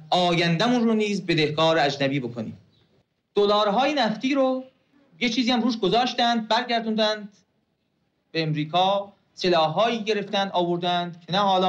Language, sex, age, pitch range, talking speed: Persian, male, 40-59, 155-215 Hz, 120 wpm